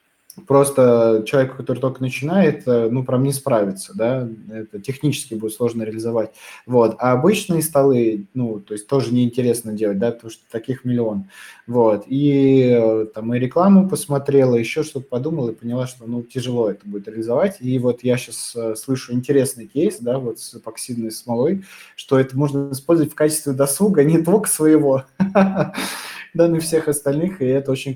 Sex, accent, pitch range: male, native, 120-145 Hz